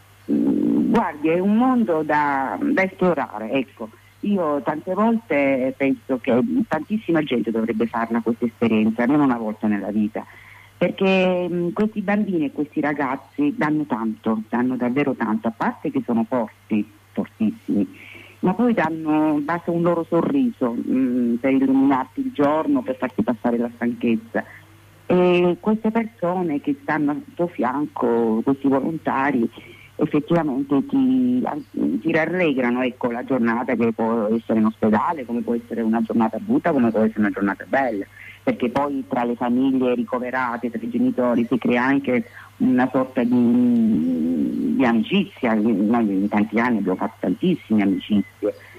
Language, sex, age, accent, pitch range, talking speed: Italian, female, 50-69, native, 115-180 Hz, 145 wpm